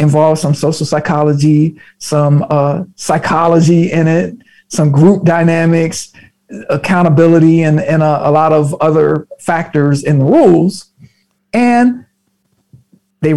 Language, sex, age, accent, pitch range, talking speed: English, male, 50-69, American, 160-200 Hz, 115 wpm